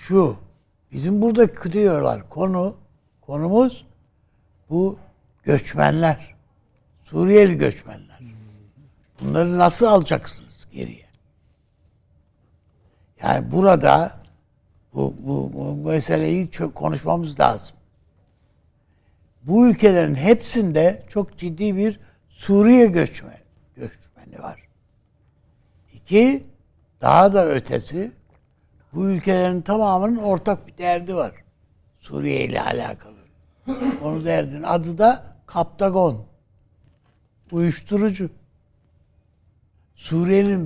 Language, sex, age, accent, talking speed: Turkish, male, 60-79, native, 80 wpm